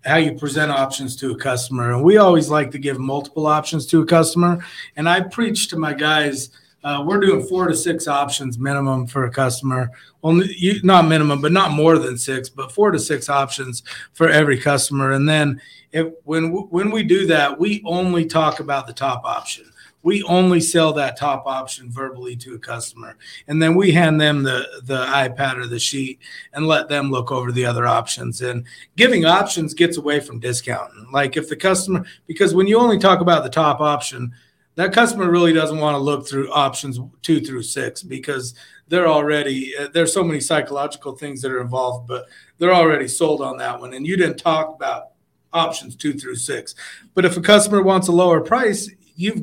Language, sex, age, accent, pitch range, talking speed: English, male, 30-49, American, 135-175 Hz, 195 wpm